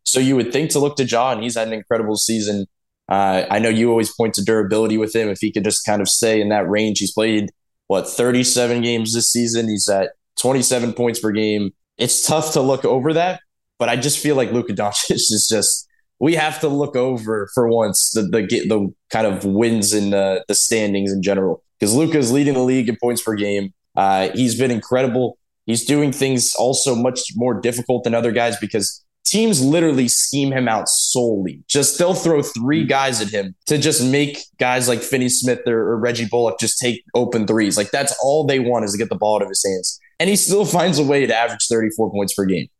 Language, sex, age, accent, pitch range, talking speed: English, male, 20-39, American, 105-135 Hz, 220 wpm